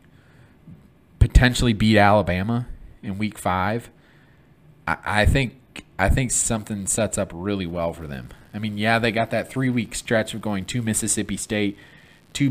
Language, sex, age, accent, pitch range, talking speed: English, male, 30-49, American, 90-120 Hz, 150 wpm